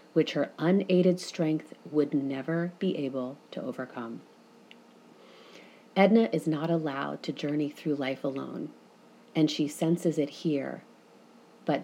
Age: 30-49